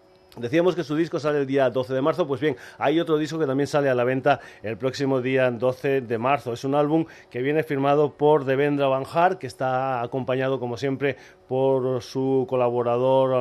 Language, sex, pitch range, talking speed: Spanish, male, 120-150 Hz, 200 wpm